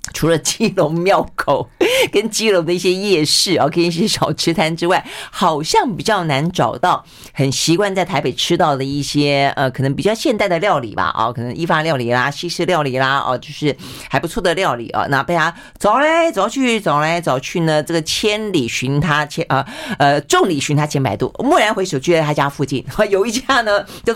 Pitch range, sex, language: 140-200 Hz, female, Chinese